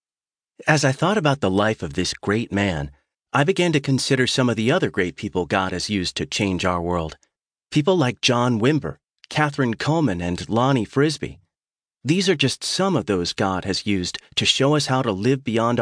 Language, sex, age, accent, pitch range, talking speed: English, male, 40-59, American, 95-135 Hz, 195 wpm